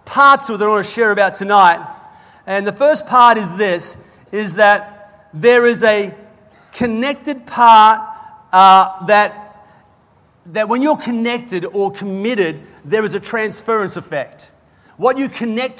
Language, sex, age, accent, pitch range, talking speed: English, male, 40-59, Australian, 205-255 Hz, 140 wpm